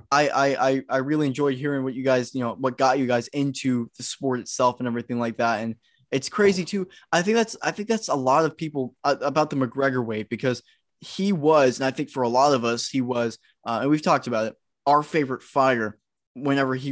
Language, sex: English, male